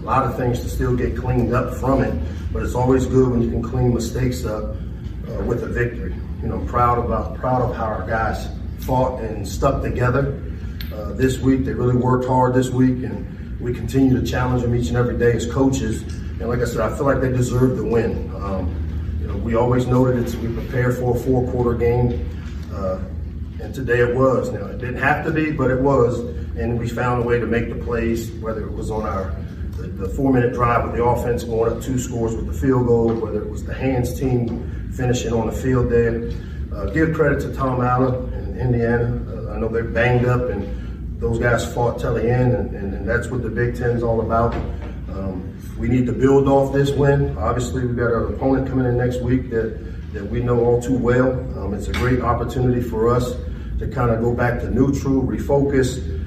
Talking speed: 225 wpm